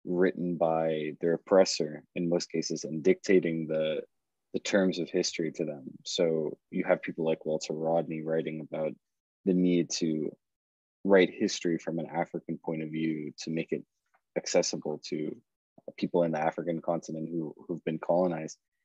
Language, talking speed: English, 160 wpm